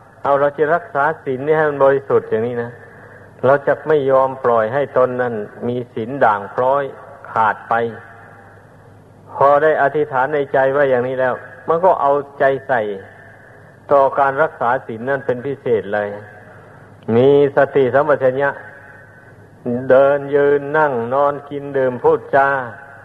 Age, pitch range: 60-79, 115-140 Hz